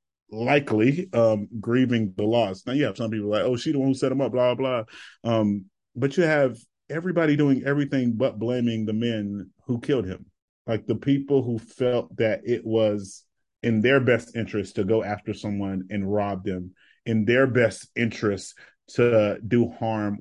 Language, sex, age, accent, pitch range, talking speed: English, male, 30-49, American, 105-125 Hz, 185 wpm